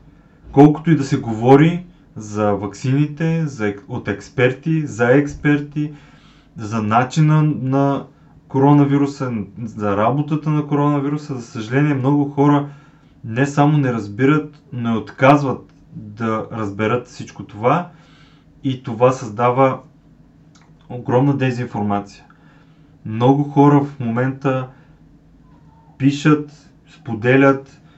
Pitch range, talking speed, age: 120-150 Hz, 100 wpm, 30-49